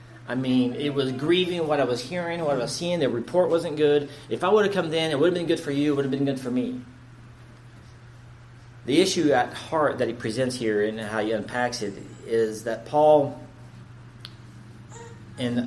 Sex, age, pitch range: male, 40-59, 120-145 Hz